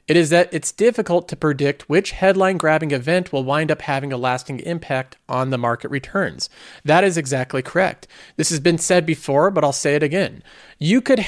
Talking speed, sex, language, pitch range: 195 wpm, male, English, 140-190 Hz